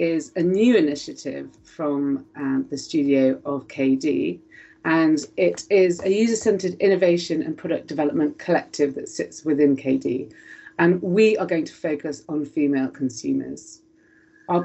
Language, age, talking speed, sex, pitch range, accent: English, 40-59, 140 wpm, female, 150-210 Hz, British